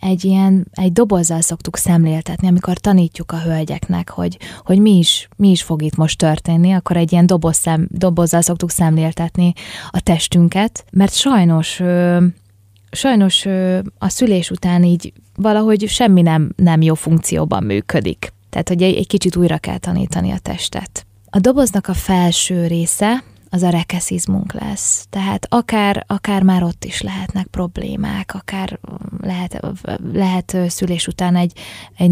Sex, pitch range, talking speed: female, 160-190 Hz, 150 wpm